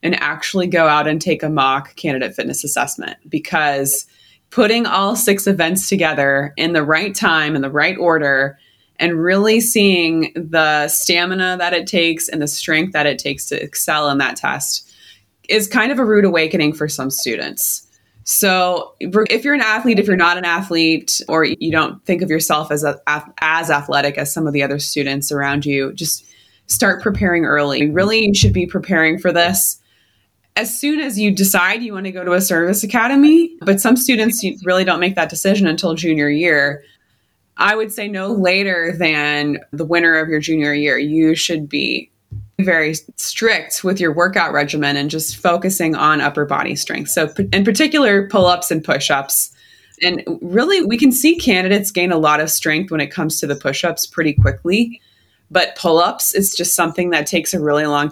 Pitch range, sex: 150-190 Hz, female